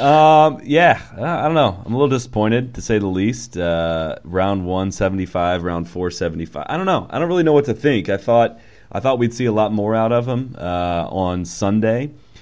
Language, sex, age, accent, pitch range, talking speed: English, male, 30-49, American, 85-115 Hz, 210 wpm